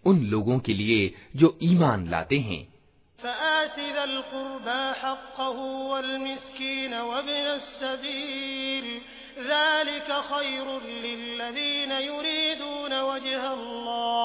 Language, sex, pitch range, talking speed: Hindi, male, 240-290 Hz, 40 wpm